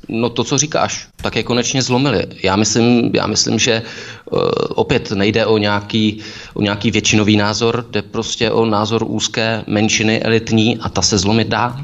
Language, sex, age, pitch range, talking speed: Czech, male, 20-39, 100-115 Hz, 165 wpm